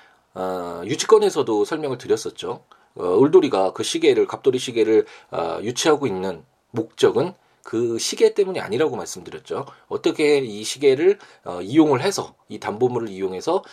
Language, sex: Korean, male